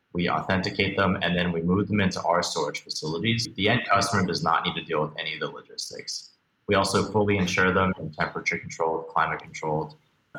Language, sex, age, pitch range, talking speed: English, male, 30-49, 85-105 Hz, 200 wpm